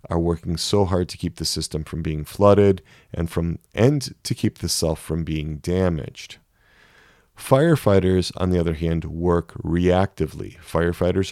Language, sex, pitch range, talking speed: English, male, 80-100 Hz, 155 wpm